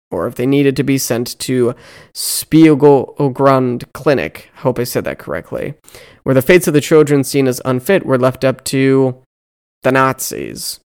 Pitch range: 130-160 Hz